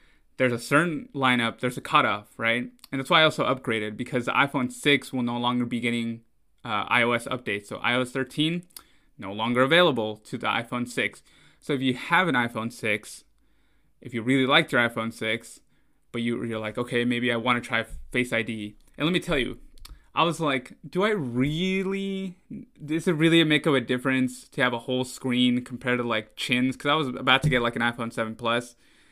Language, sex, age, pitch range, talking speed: English, male, 20-39, 120-145 Hz, 200 wpm